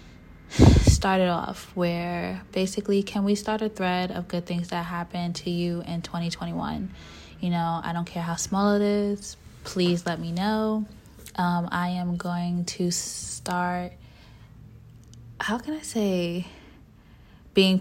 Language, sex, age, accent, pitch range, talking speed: English, female, 20-39, American, 170-185 Hz, 145 wpm